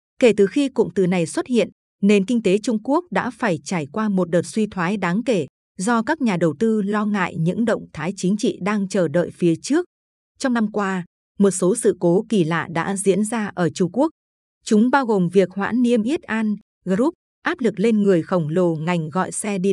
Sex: female